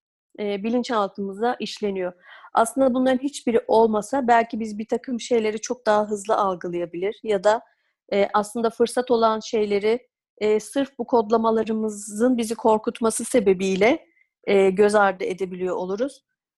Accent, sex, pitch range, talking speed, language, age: native, female, 205-260 Hz, 110 wpm, Turkish, 40-59